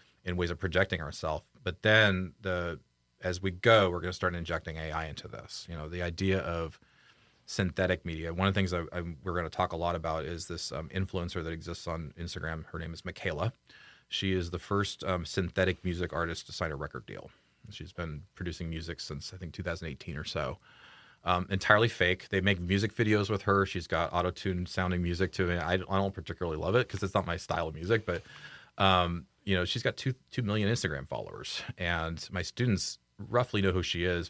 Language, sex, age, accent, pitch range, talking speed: English, male, 30-49, American, 85-95 Hz, 210 wpm